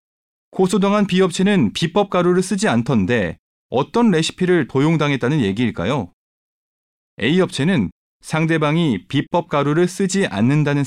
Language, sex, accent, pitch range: Korean, male, native, 130-180 Hz